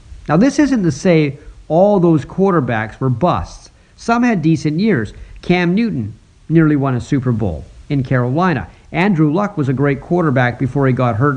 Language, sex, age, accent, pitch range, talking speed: English, male, 50-69, American, 130-175 Hz, 175 wpm